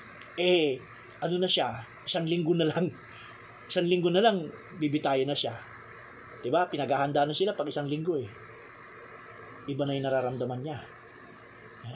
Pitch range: 135-180 Hz